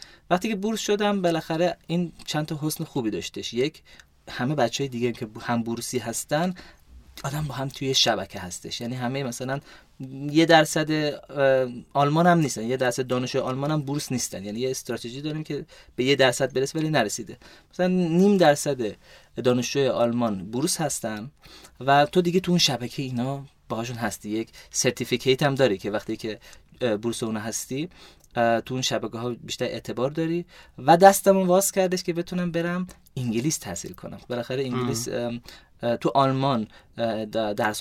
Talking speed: 155 wpm